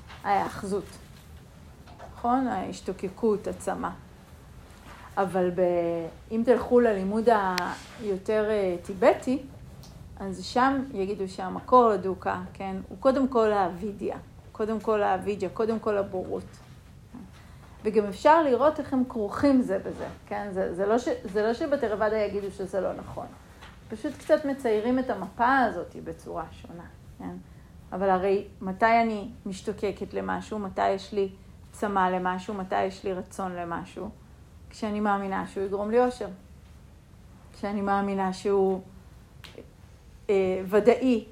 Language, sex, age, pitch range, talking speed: Hebrew, female, 40-59, 190-225 Hz, 120 wpm